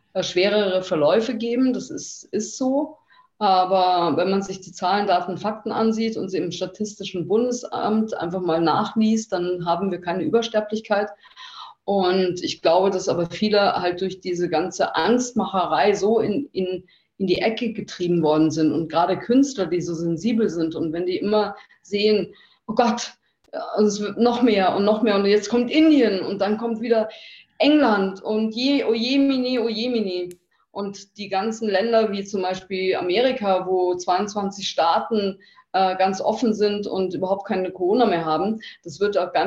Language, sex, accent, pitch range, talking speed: German, female, German, 180-225 Hz, 165 wpm